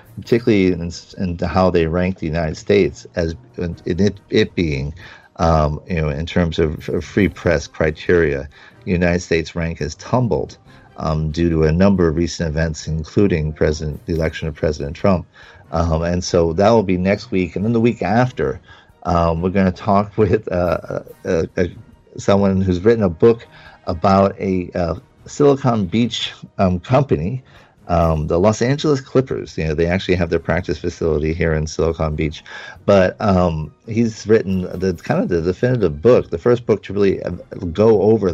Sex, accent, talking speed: male, American, 180 wpm